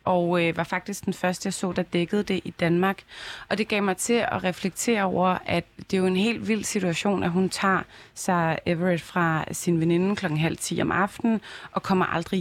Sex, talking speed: female, 215 wpm